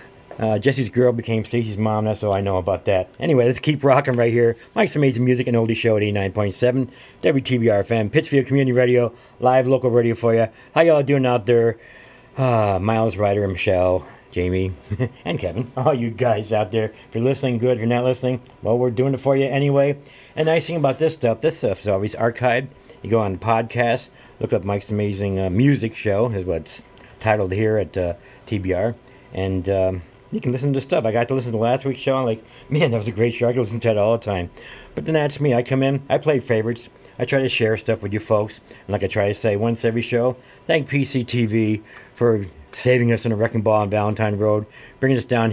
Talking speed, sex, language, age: 230 wpm, male, English, 50-69